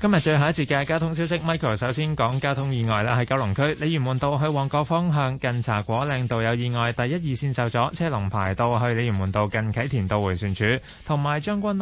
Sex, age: male, 20-39